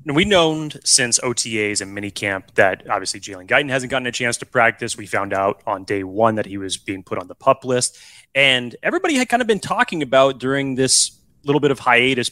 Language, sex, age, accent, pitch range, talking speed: English, male, 30-49, American, 110-145 Hz, 225 wpm